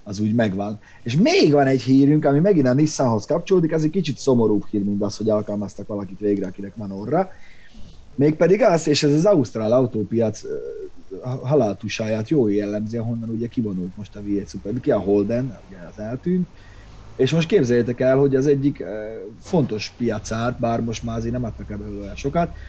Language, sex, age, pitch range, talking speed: Hungarian, male, 30-49, 105-130 Hz, 175 wpm